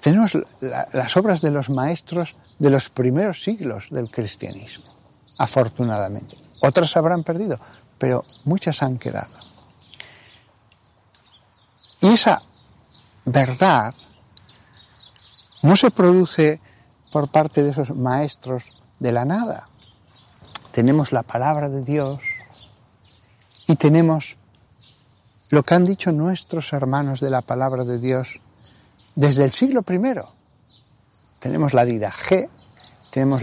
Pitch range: 115-155 Hz